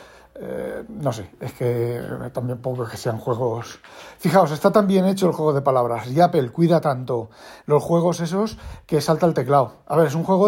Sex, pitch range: male, 140-185 Hz